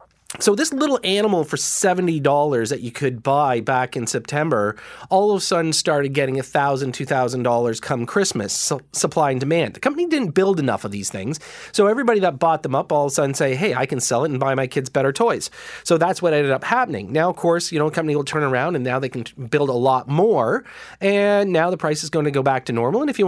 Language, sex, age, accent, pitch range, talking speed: English, male, 30-49, American, 135-185 Hz, 245 wpm